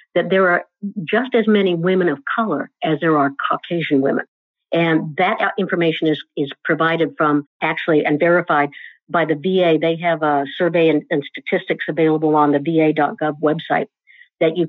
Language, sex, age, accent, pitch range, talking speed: English, female, 60-79, American, 160-200 Hz, 170 wpm